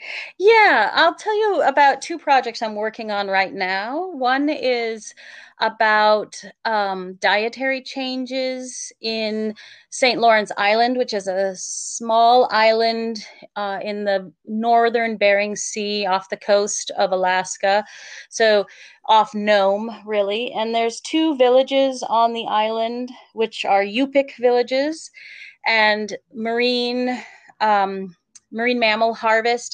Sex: female